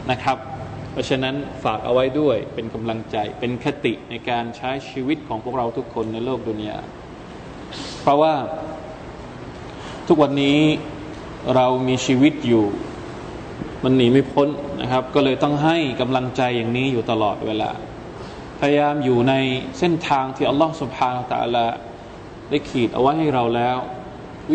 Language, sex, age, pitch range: Thai, male, 20-39, 125-155 Hz